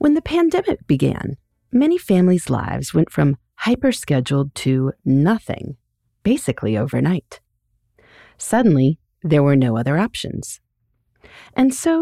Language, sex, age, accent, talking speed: English, female, 40-59, American, 110 wpm